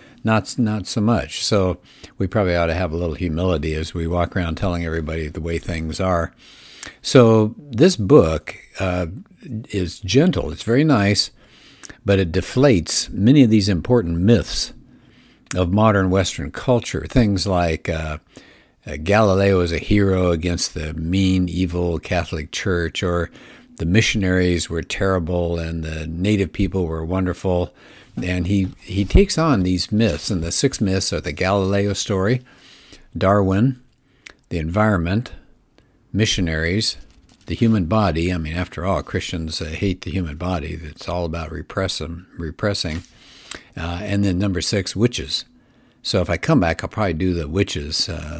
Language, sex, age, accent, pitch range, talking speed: English, male, 60-79, American, 85-105 Hz, 150 wpm